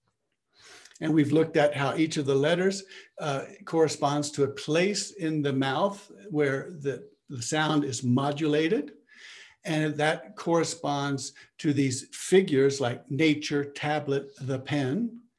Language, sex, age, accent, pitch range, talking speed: English, male, 60-79, American, 140-170 Hz, 135 wpm